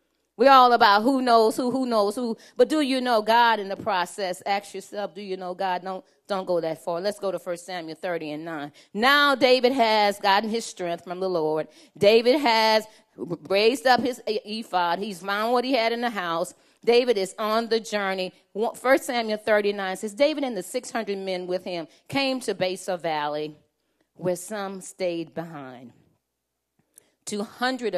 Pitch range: 165-240 Hz